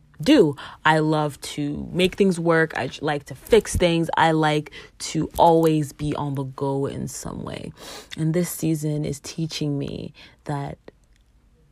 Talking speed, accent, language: 155 wpm, American, English